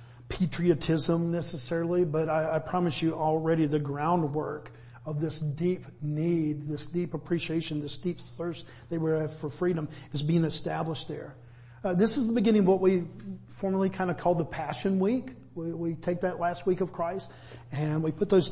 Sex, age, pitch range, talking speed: male, 50-69, 150-180 Hz, 180 wpm